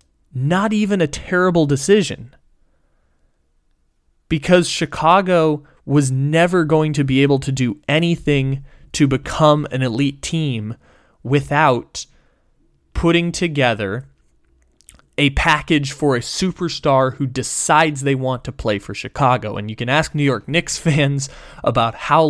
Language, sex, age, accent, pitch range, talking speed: English, male, 20-39, American, 120-150 Hz, 125 wpm